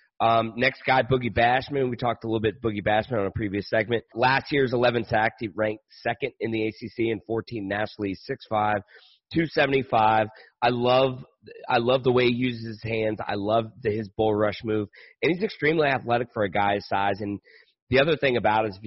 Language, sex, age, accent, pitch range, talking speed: English, male, 30-49, American, 105-120 Hz, 200 wpm